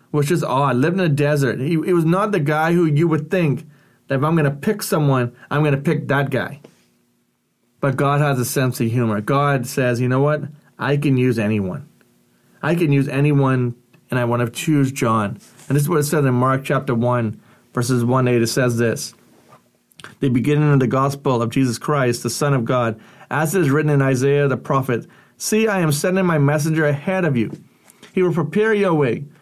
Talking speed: 210 wpm